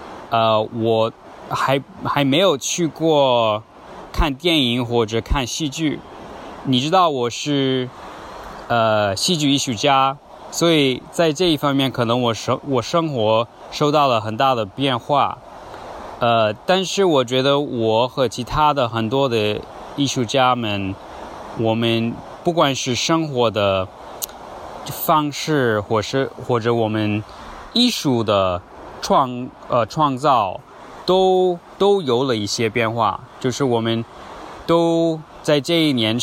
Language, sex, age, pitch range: Chinese, male, 20-39, 115-155 Hz